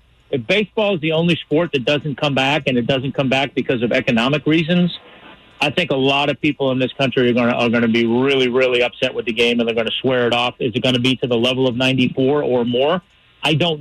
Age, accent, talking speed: 40-59, American, 270 wpm